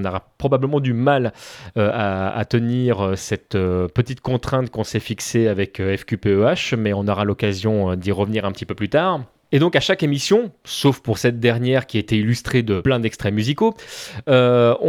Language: French